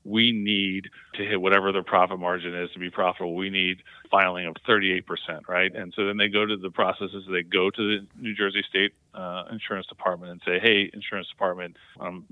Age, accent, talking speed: 40-59, American, 205 wpm